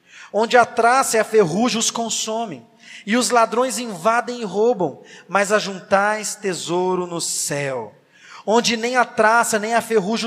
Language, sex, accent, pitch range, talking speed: Portuguese, male, Brazilian, 170-225 Hz, 160 wpm